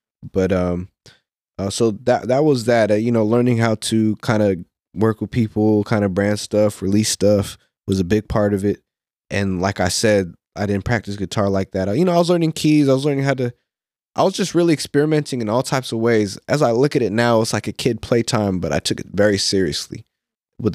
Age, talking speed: 20-39, 235 wpm